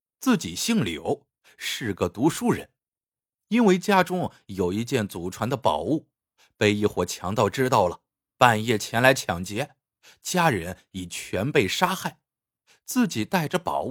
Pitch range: 110-165 Hz